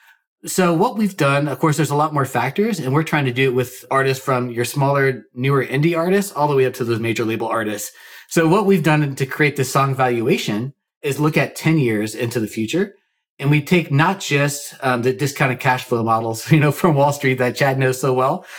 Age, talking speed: 30-49, 230 wpm